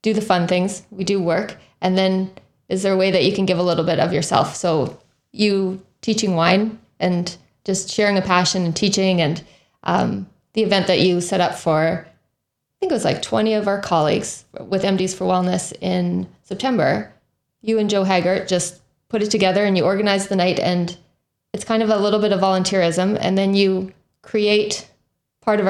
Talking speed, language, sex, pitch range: 200 wpm, English, female, 175-200 Hz